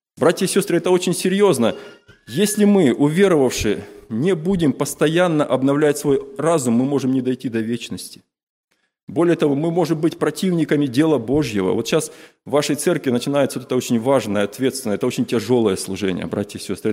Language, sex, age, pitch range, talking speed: Russian, male, 20-39, 120-155 Hz, 165 wpm